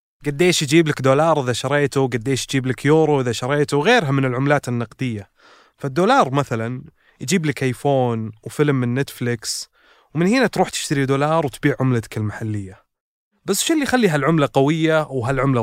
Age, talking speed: 20-39, 150 wpm